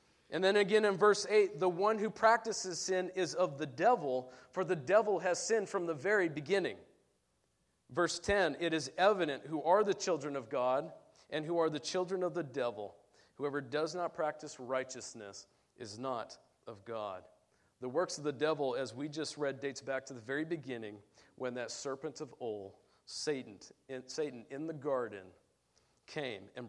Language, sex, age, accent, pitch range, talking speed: English, male, 40-59, American, 135-185 Hz, 180 wpm